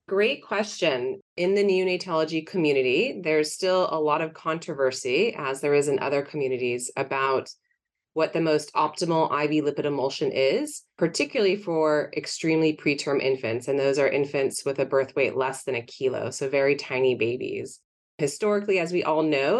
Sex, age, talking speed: female, 30-49, 160 wpm